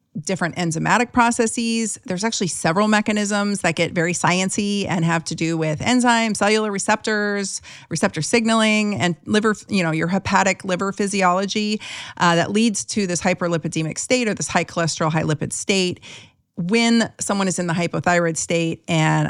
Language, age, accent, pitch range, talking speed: English, 40-59, American, 160-205 Hz, 160 wpm